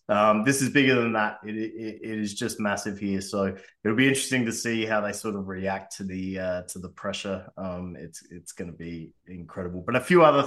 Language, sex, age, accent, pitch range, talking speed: English, male, 20-39, Australian, 100-125 Hz, 235 wpm